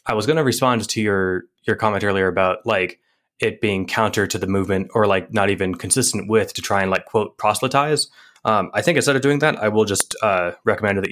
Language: English